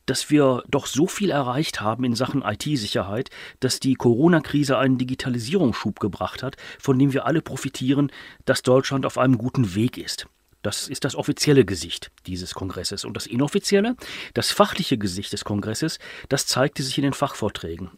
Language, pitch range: German, 120-155 Hz